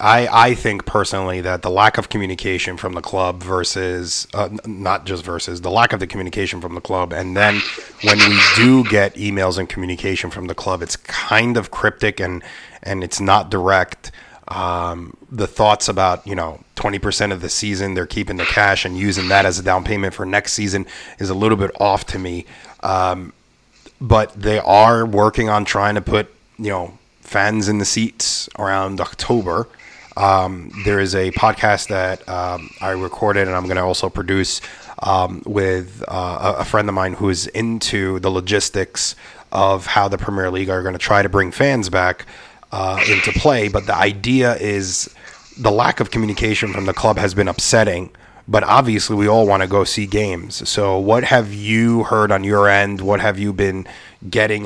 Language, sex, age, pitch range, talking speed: English, male, 30-49, 95-105 Hz, 190 wpm